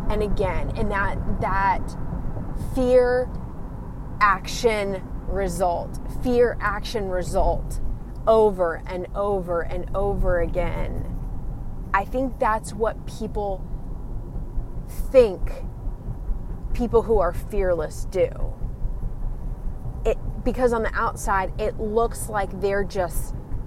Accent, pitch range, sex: American, 180-230 Hz, female